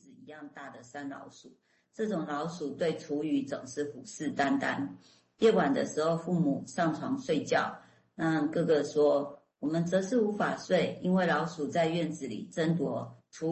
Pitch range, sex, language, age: 150-185 Hz, female, Chinese, 50-69